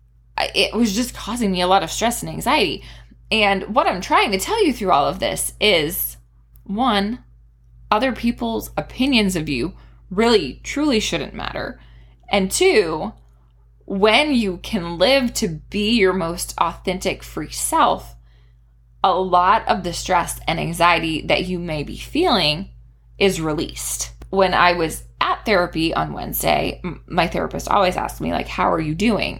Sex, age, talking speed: female, 20-39, 155 wpm